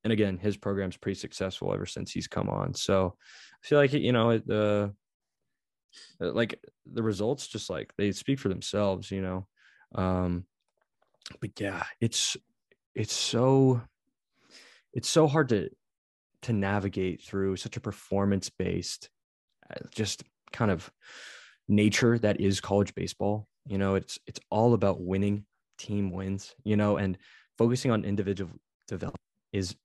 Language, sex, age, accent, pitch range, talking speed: English, male, 20-39, American, 95-110 Hz, 145 wpm